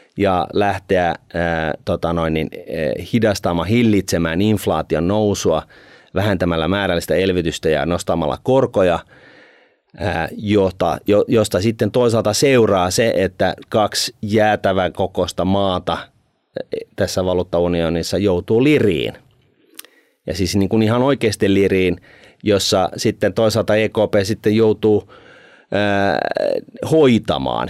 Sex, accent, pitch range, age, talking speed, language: male, native, 85-110 Hz, 30-49, 100 wpm, Finnish